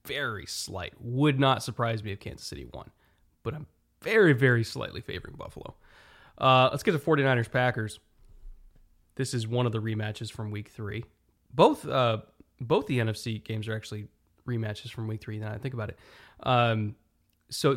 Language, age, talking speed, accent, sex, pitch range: English, 20-39, 170 wpm, American, male, 105-130 Hz